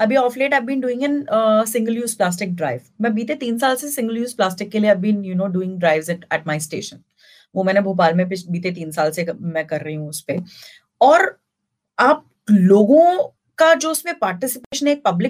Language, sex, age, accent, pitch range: Hindi, female, 30-49, native, 195-270 Hz